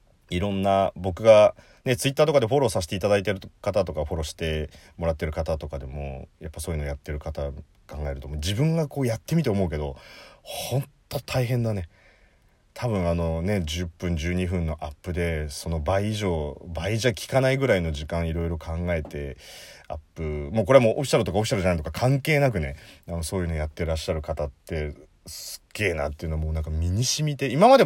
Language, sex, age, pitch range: Japanese, male, 30-49, 80-110 Hz